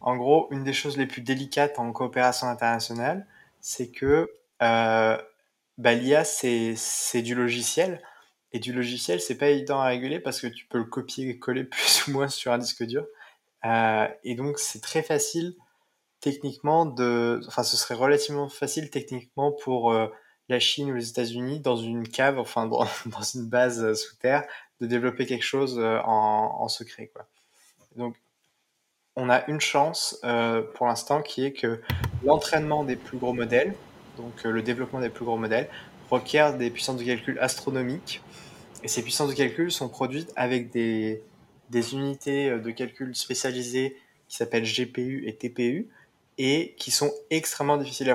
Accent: French